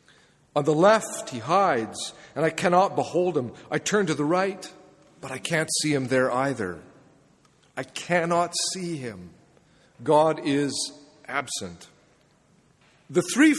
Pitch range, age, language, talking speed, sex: 145-190 Hz, 50-69, English, 135 wpm, male